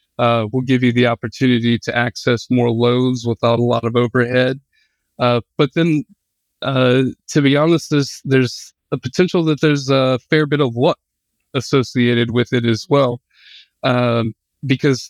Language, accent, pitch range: English, American, 120-140 Hz